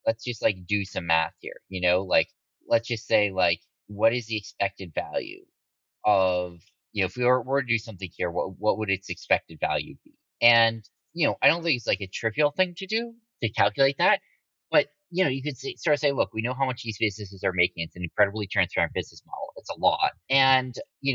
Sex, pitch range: male, 100-130 Hz